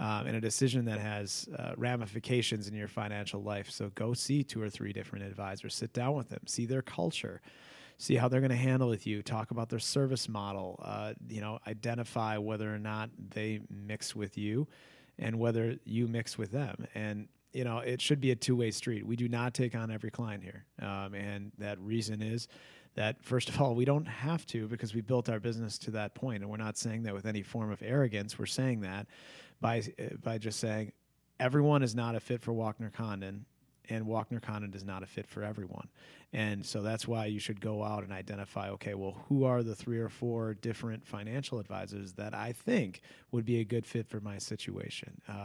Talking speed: 220 wpm